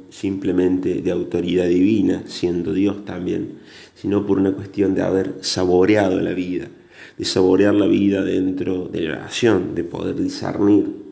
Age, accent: 30-49, Argentinian